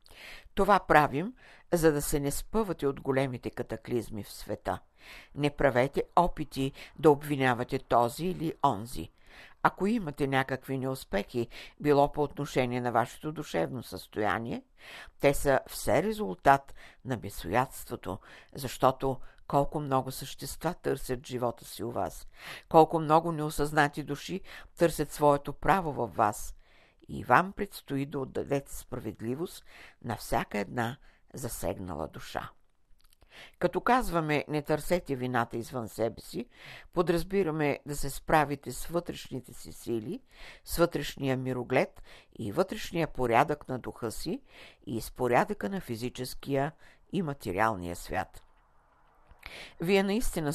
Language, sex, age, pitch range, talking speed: Bulgarian, female, 60-79, 125-155 Hz, 120 wpm